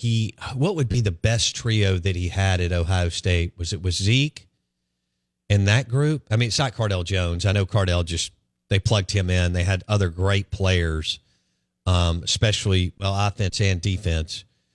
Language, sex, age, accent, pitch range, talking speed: English, male, 40-59, American, 80-105 Hz, 185 wpm